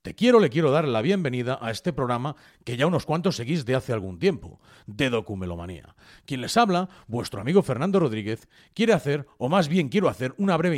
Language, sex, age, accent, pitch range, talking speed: Spanish, male, 40-59, Spanish, 120-180 Hz, 205 wpm